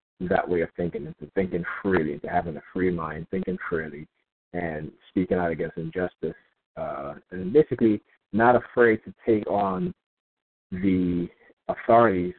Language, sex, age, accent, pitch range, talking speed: English, male, 50-69, American, 90-120 Hz, 140 wpm